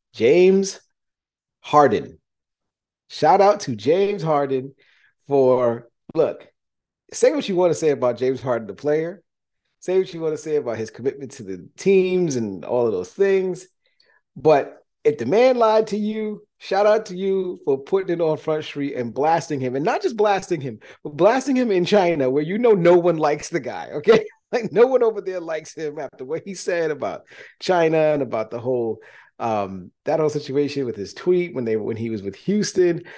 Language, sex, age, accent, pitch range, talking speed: English, male, 30-49, American, 125-195 Hz, 195 wpm